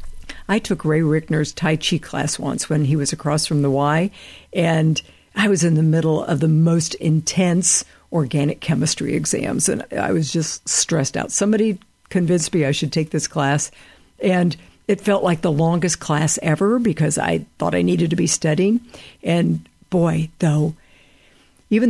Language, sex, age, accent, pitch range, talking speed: English, female, 60-79, American, 150-195 Hz, 170 wpm